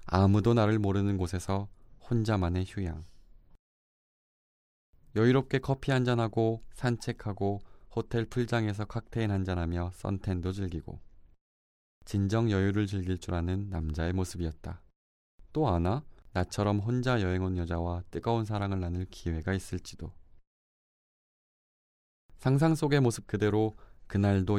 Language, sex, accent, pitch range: Korean, male, native, 85-105 Hz